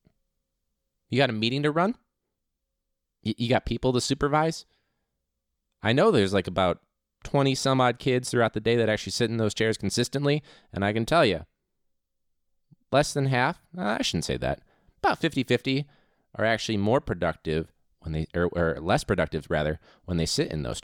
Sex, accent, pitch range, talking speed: male, American, 80-120 Hz, 175 wpm